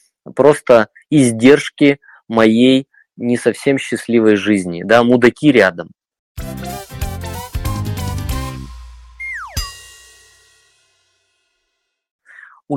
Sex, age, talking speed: male, 20-39, 50 wpm